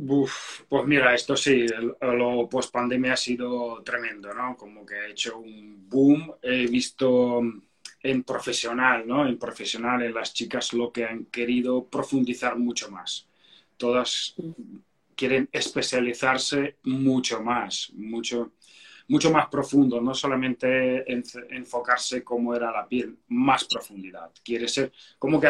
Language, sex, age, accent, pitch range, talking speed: Spanish, male, 30-49, Spanish, 120-135 Hz, 130 wpm